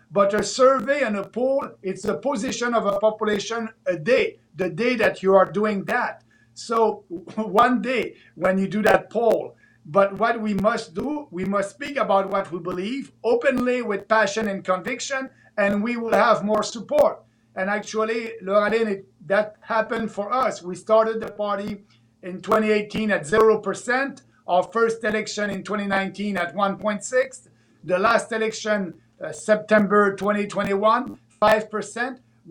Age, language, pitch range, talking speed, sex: 50-69, English, 195-230 Hz, 150 wpm, male